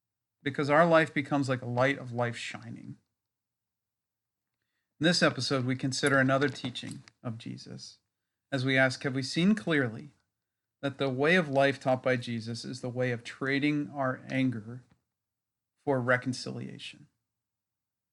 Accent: American